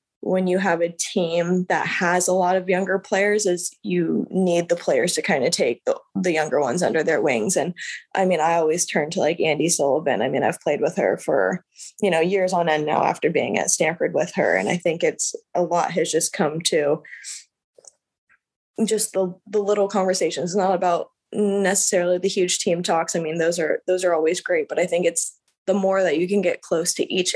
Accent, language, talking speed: American, English, 220 wpm